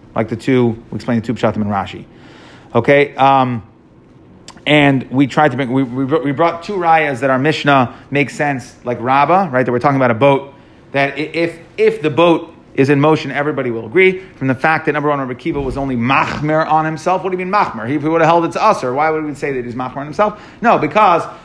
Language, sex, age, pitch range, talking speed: English, male, 30-49, 130-165 Hz, 245 wpm